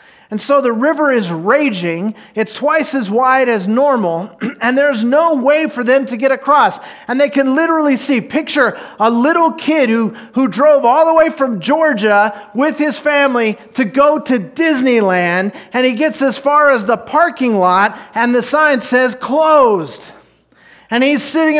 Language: English